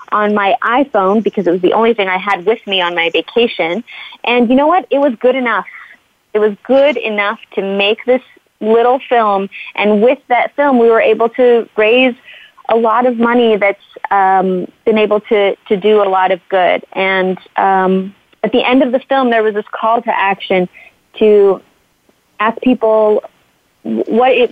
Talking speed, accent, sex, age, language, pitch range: 185 wpm, American, female, 20-39, English, 195-240 Hz